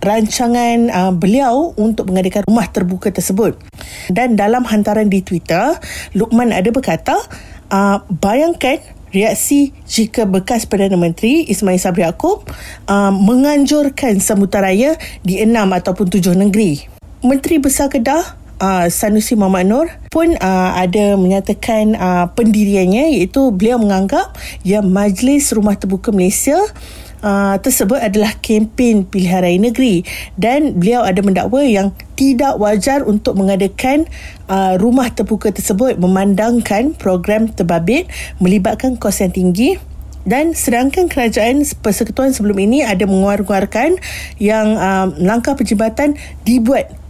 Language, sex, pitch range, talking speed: Malay, female, 195-255 Hz, 120 wpm